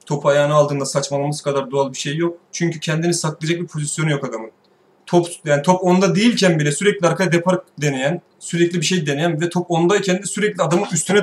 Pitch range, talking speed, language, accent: 140-175 Hz, 190 wpm, Turkish, native